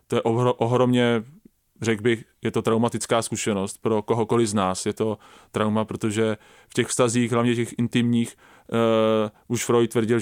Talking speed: 155 wpm